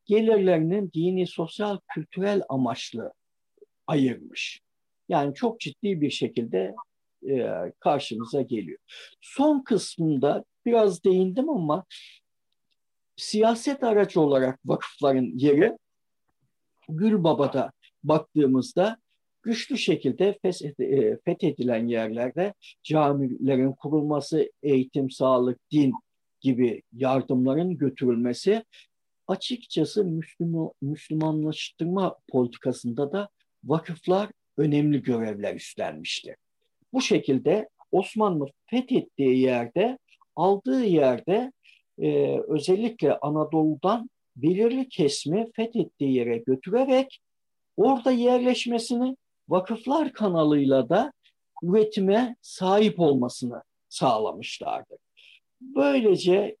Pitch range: 140-225 Hz